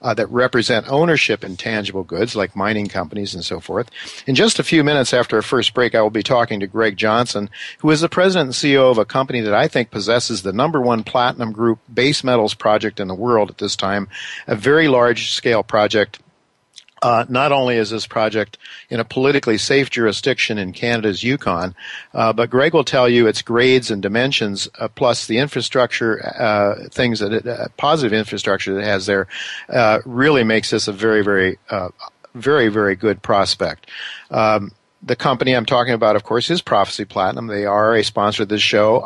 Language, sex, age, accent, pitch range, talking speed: English, male, 50-69, American, 100-120 Hz, 200 wpm